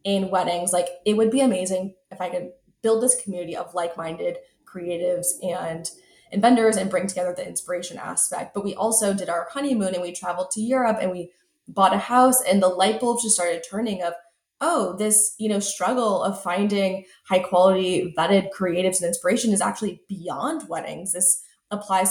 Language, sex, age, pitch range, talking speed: English, female, 20-39, 180-215 Hz, 185 wpm